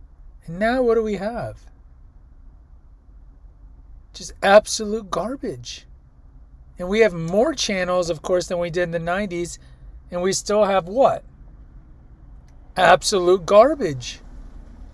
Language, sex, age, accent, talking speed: English, male, 40-59, American, 115 wpm